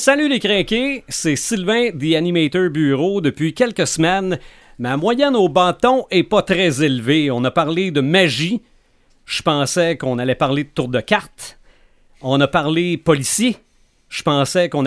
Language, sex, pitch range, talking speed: French, male, 140-205 Hz, 160 wpm